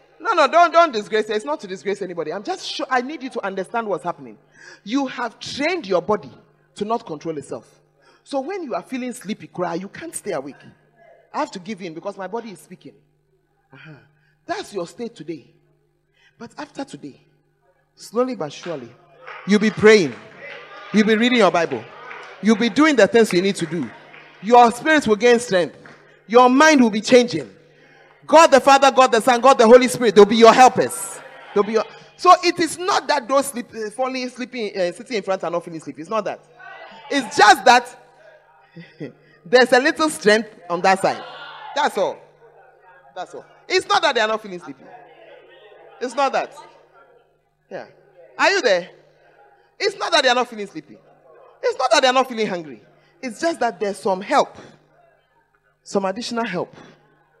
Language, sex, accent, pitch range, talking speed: English, male, Nigerian, 190-280 Hz, 190 wpm